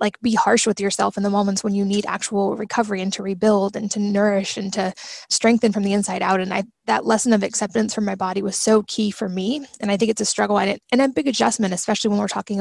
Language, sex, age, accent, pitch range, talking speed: English, female, 20-39, American, 200-230 Hz, 260 wpm